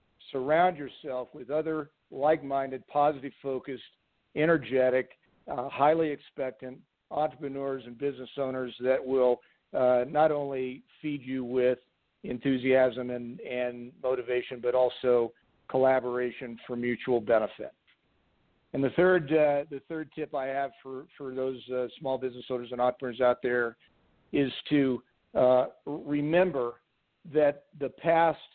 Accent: American